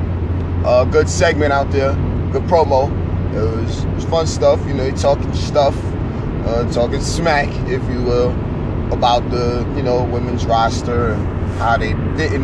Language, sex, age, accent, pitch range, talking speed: English, male, 30-49, American, 85-120 Hz, 165 wpm